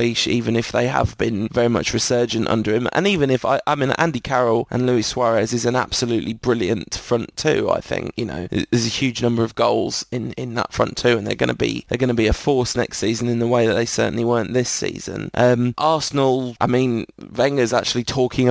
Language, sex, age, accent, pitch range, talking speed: English, male, 20-39, British, 115-130 Hz, 230 wpm